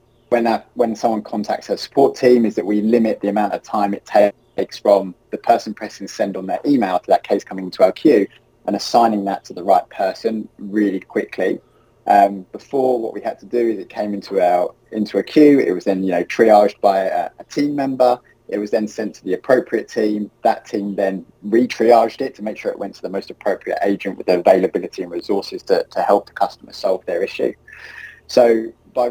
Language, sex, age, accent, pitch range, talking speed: English, male, 20-39, British, 100-125 Hz, 220 wpm